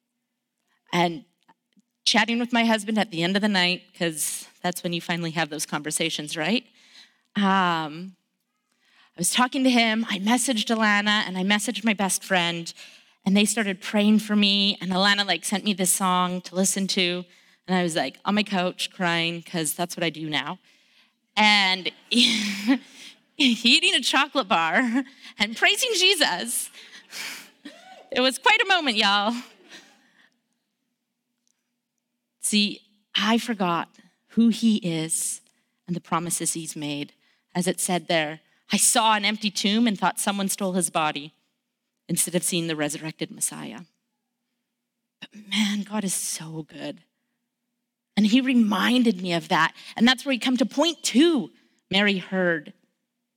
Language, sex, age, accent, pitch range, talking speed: English, female, 30-49, American, 180-245 Hz, 150 wpm